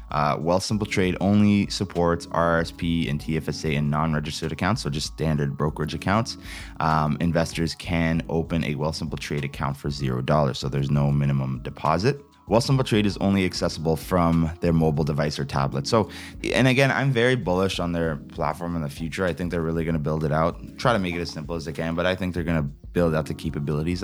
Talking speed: 215 wpm